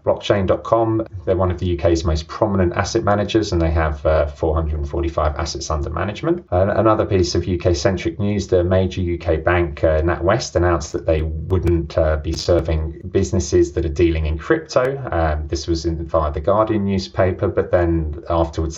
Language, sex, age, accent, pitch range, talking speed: English, male, 30-49, British, 80-90 Hz, 165 wpm